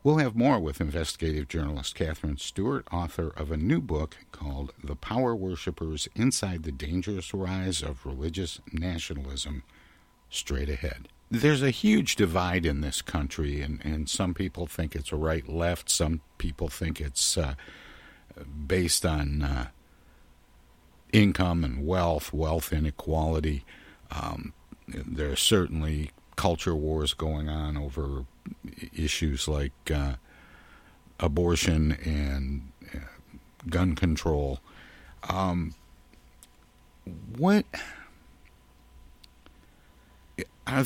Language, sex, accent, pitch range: English, male, American, 70-90 Hz